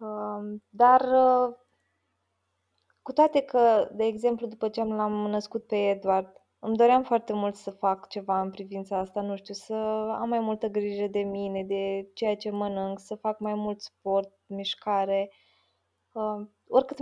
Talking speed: 150 wpm